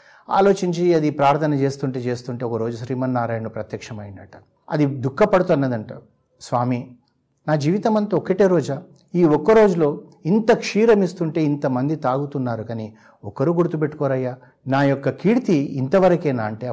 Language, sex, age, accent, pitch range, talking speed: Telugu, male, 60-79, native, 125-175 Hz, 110 wpm